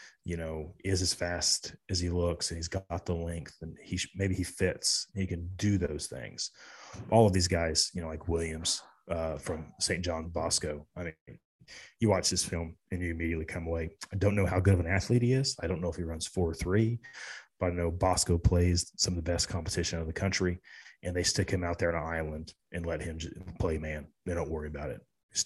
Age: 30-49